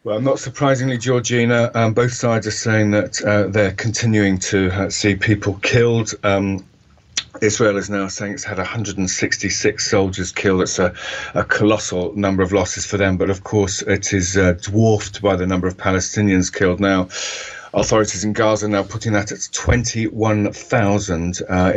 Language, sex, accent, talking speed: English, male, British, 165 wpm